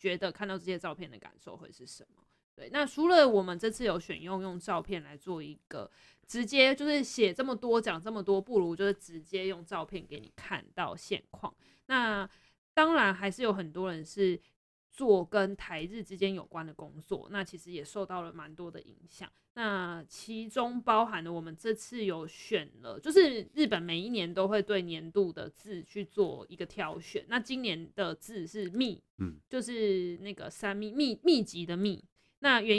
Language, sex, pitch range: Chinese, female, 175-220 Hz